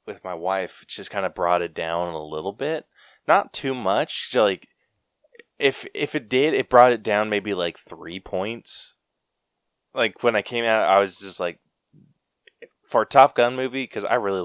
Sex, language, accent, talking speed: male, English, American, 190 wpm